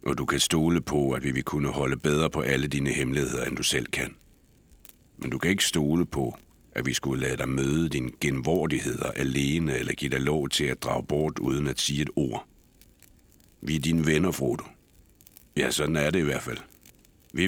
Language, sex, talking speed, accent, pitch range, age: Danish, male, 205 wpm, native, 70-85 Hz, 60-79